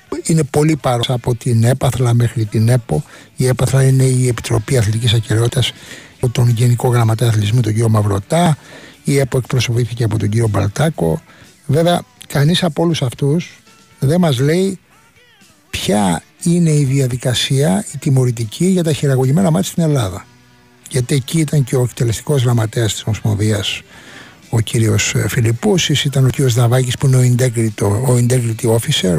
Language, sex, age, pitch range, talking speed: Greek, male, 60-79, 120-155 Hz, 150 wpm